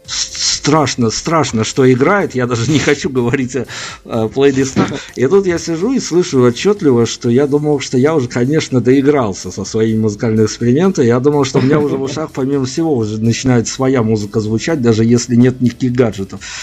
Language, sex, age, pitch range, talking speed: Russian, male, 50-69, 110-140 Hz, 185 wpm